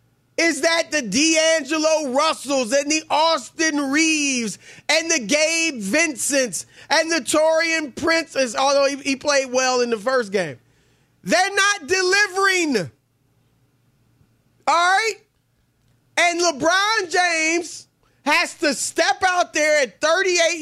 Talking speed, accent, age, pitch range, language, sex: 120 wpm, American, 30-49, 260-330 Hz, English, male